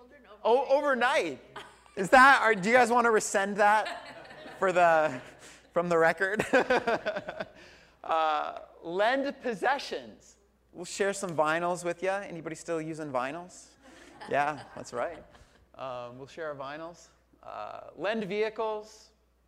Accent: American